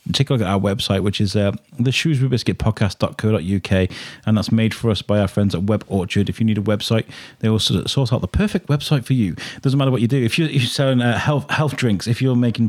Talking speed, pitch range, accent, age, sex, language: 245 wpm, 100-130 Hz, British, 30-49, male, English